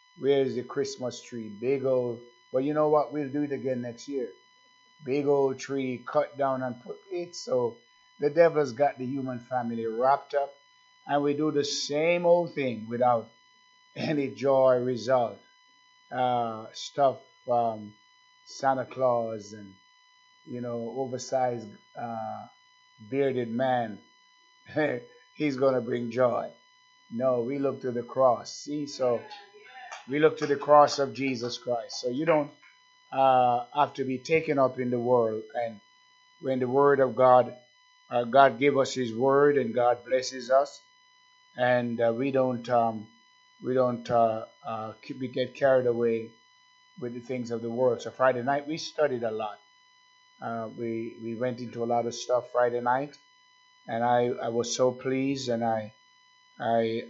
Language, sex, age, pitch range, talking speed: English, male, 50-69, 120-165 Hz, 160 wpm